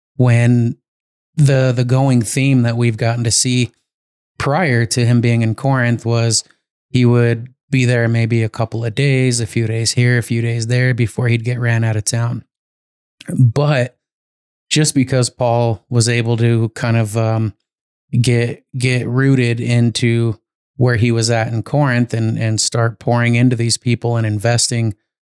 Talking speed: 165 wpm